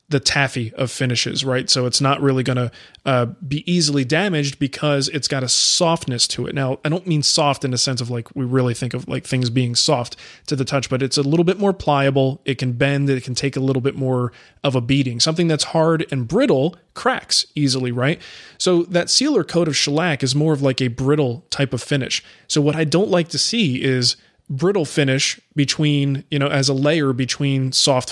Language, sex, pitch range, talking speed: English, male, 130-155 Hz, 220 wpm